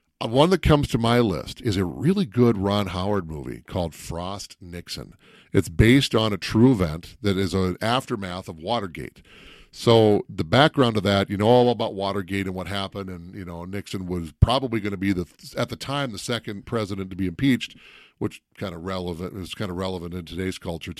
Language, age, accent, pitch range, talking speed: English, 40-59, American, 95-125 Hz, 205 wpm